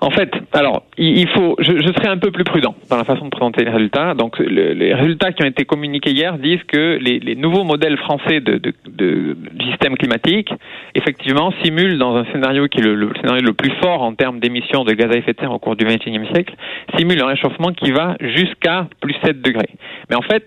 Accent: French